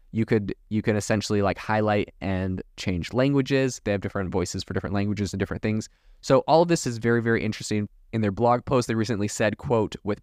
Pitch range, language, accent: 100-120 Hz, English, American